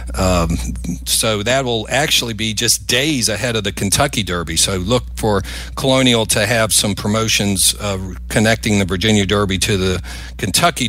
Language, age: English, 50-69